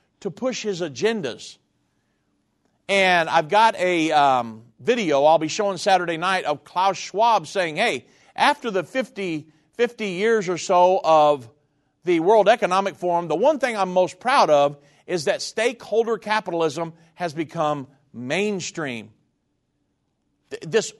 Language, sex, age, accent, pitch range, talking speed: English, male, 50-69, American, 155-215 Hz, 135 wpm